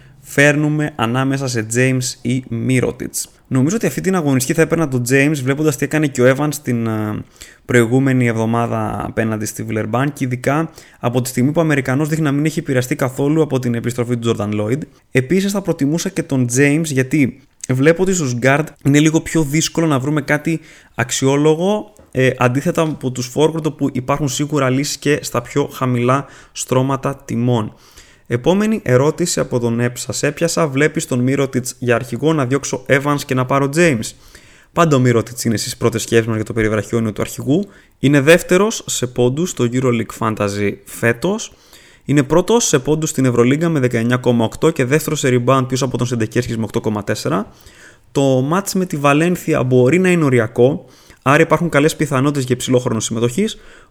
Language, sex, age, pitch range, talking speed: Greek, male, 20-39, 120-155 Hz, 175 wpm